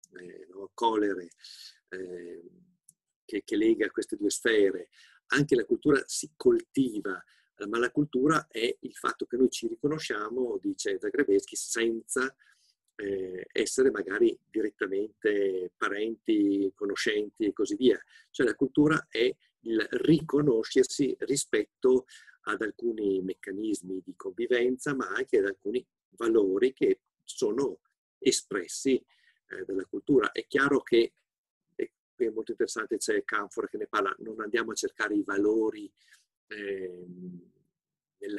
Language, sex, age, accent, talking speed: Italian, male, 50-69, native, 120 wpm